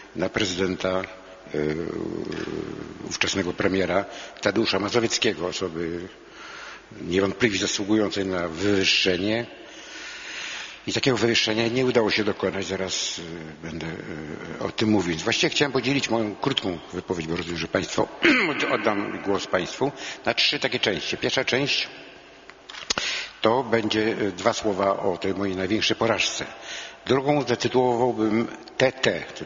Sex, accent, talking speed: male, native, 120 wpm